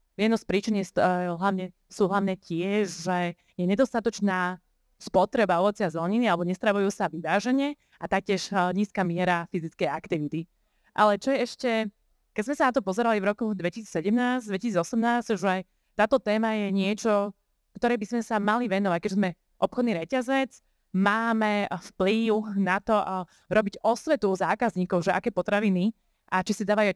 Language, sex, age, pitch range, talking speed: Slovak, female, 20-39, 185-225 Hz, 150 wpm